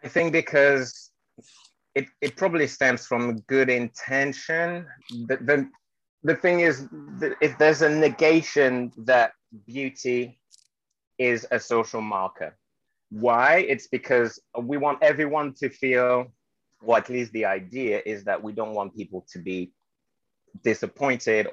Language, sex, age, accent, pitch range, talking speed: English, male, 30-49, British, 105-150 Hz, 135 wpm